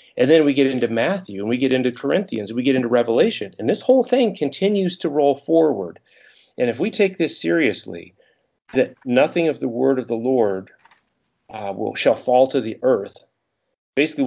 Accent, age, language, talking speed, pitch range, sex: American, 40-59, English, 195 wpm, 110-155 Hz, male